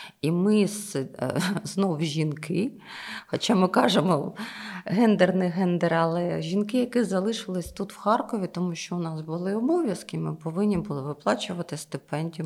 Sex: female